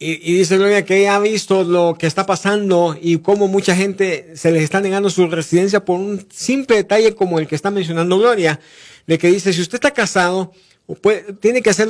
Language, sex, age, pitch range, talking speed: English, male, 50-69, 160-200 Hz, 200 wpm